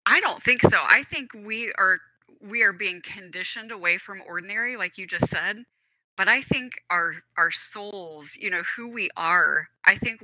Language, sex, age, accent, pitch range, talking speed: English, female, 30-49, American, 175-215 Hz, 190 wpm